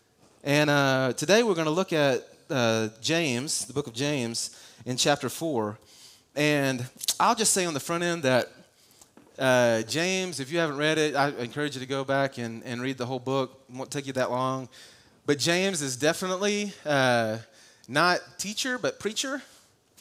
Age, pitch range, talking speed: 30-49, 120-155 Hz, 185 wpm